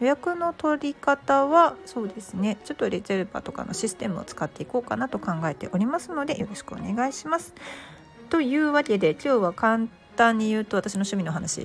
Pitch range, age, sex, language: 180-275 Hz, 40-59, female, Japanese